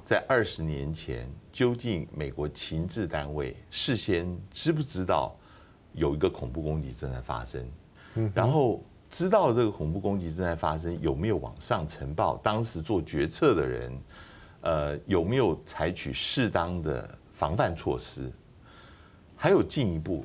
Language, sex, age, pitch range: Chinese, male, 60-79, 70-105 Hz